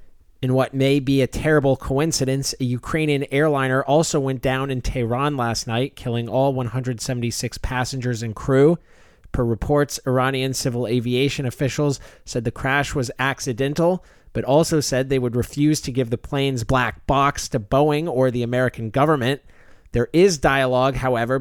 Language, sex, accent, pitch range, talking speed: English, male, American, 120-145 Hz, 155 wpm